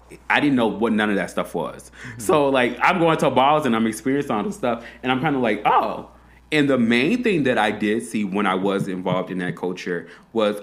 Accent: American